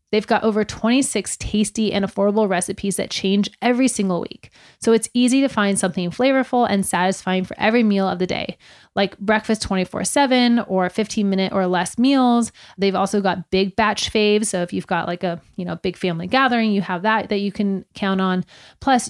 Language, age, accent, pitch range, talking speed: English, 30-49, American, 185-220 Hz, 200 wpm